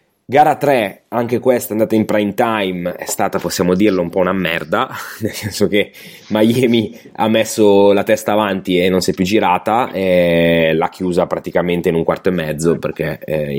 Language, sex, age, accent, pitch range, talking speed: Italian, male, 20-39, native, 85-105 Hz, 185 wpm